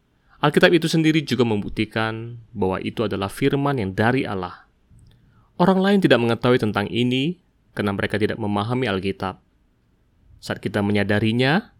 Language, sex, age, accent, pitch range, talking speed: Indonesian, male, 20-39, native, 100-130 Hz, 130 wpm